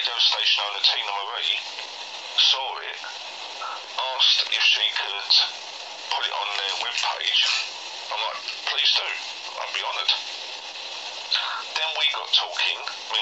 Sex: male